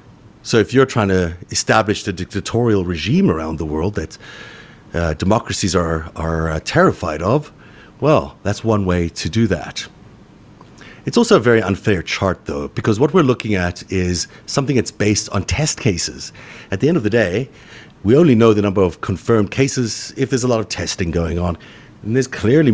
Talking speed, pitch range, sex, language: 185 wpm, 85-110 Hz, male, English